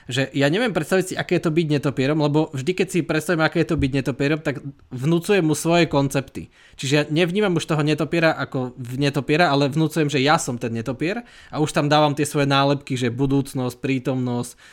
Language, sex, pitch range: Slovak, male, 135-160 Hz